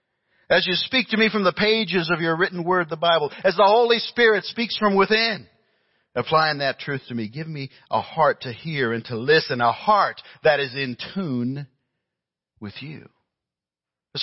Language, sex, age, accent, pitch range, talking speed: English, male, 50-69, American, 115-160 Hz, 185 wpm